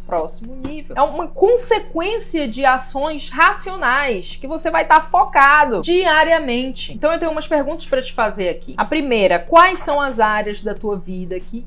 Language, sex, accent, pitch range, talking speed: Portuguese, female, Brazilian, 210-300 Hz, 170 wpm